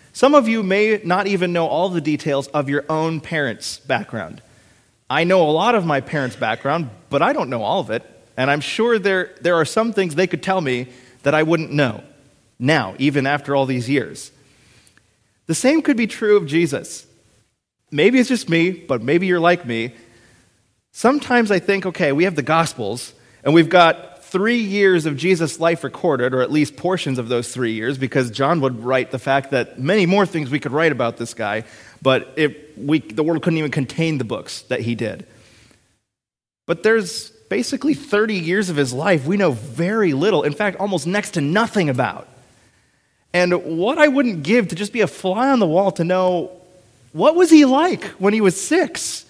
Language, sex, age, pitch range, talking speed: English, male, 30-49, 130-200 Hz, 195 wpm